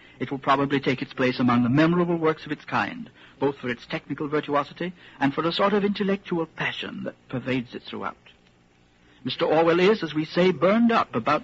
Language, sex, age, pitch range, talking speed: English, male, 60-79, 115-170 Hz, 200 wpm